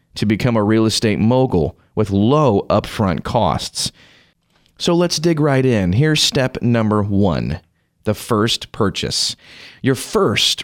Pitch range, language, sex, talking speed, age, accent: 105-150 Hz, English, male, 135 wpm, 30-49, American